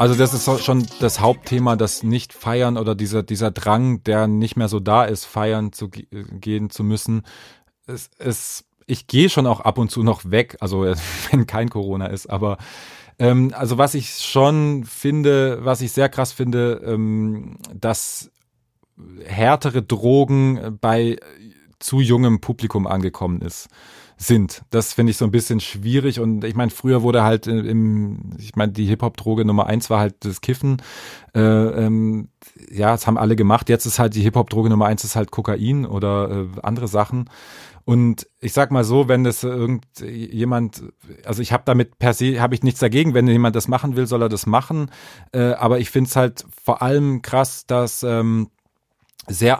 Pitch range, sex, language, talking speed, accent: 110-125 Hz, male, German, 180 wpm, German